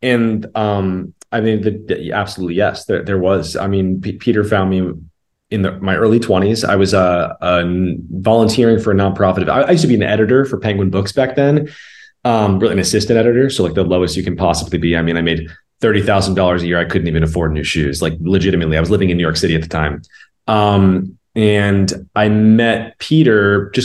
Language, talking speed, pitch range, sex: English, 220 wpm, 85-105 Hz, male